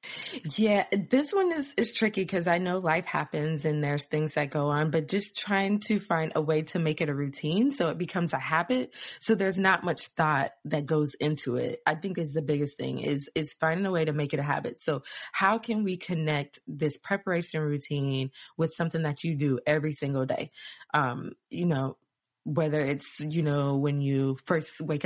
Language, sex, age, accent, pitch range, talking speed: English, female, 20-39, American, 140-170 Hz, 205 wpm